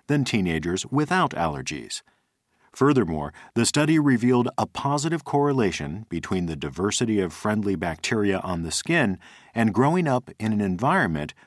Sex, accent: male, American